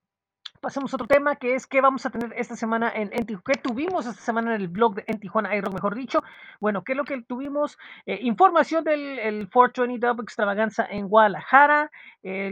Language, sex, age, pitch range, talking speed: Spanish, female, 40-59, 200-255 Hz, 195 wpm